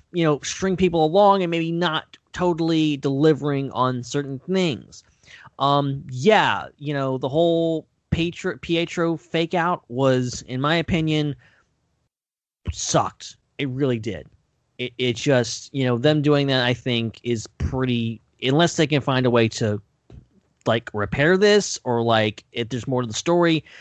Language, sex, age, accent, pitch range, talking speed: English, male, 20-39, American, 120-165 Hz, 155 wpm